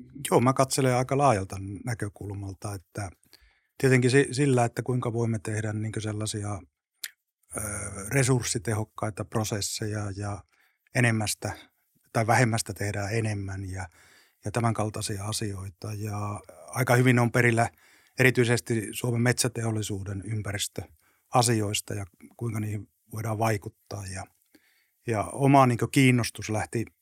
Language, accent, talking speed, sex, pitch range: Finnish, native, 105 wpm, male, 105-120 Hz